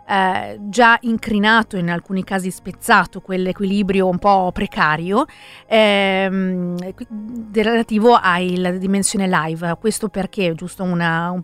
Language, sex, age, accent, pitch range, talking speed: Italian, female, 40-59, native, 180-215 Hz, 100 wpm